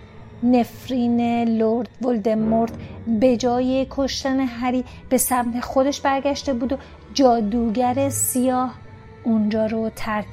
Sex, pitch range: female, 230-265 Hz